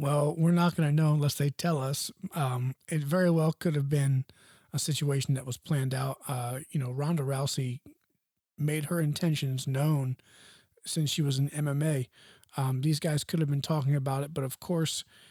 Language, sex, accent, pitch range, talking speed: English, male, American, 135-160 Hz, 190 wpm